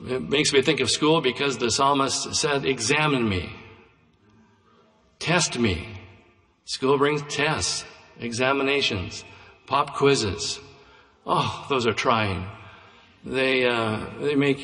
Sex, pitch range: male, 115-135 Hz